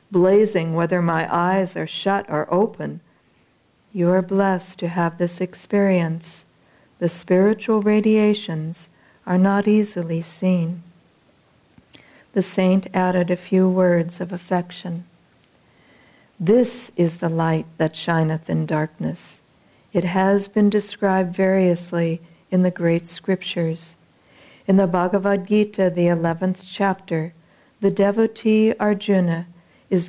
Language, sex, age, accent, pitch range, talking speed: English, female, 60-79, American, 170-200 Hz, 115 wpm